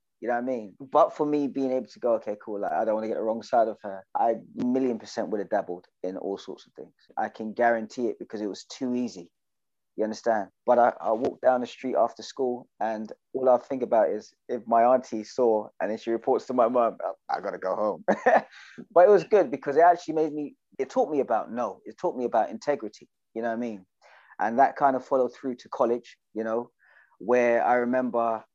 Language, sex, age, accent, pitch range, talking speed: English, male, 20-39, British, 110-145 Hz, 245 wpm